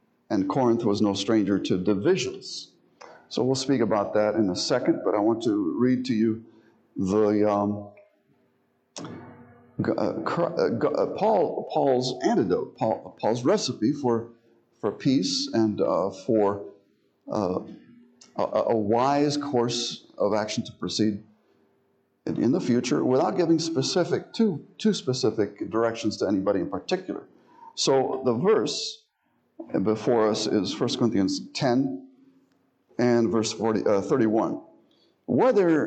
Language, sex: English, male